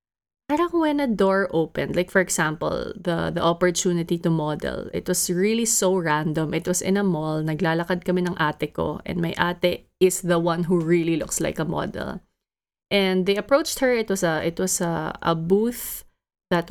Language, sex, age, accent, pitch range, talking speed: English, female, 20-39, Filipino, 165-195 Hz, 185 wpm